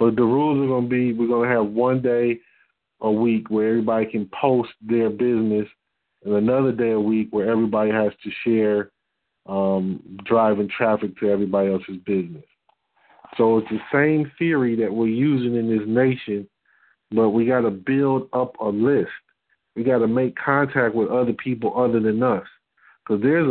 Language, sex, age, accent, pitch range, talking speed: English, male, 40-59, American, 110-140 Hz, 180 wpm